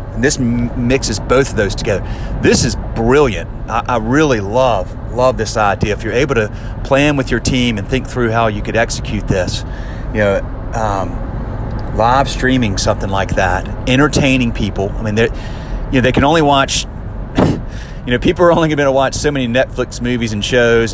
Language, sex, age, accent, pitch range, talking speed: English, male, 30-49, American, 105-125 Hz, 195 wpm